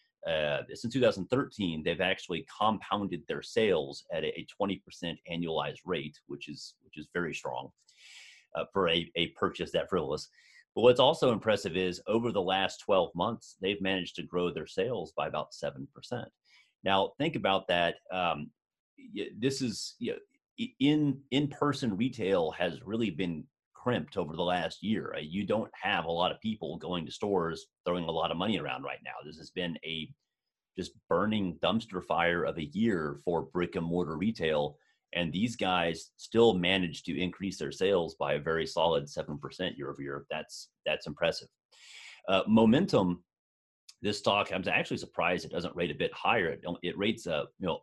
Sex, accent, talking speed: male, American, 175 wpm